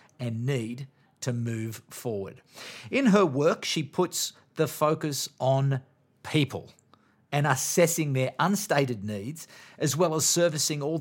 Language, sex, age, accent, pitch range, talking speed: English, male, 40-59, Australian, 120-165 Hz, 130 wpm